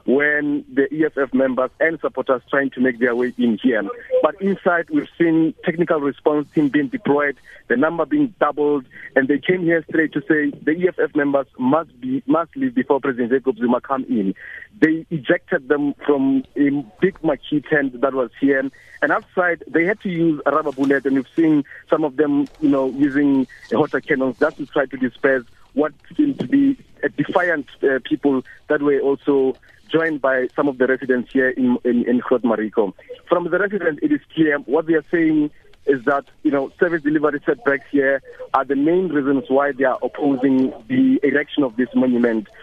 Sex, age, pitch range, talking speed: male, 50-69, 135-165 Hz, 190 wpm